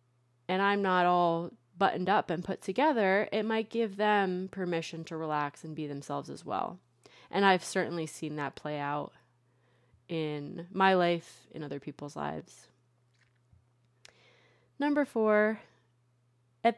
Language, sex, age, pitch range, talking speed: English, female, 30-49, 145-195 Hz, 135 wpm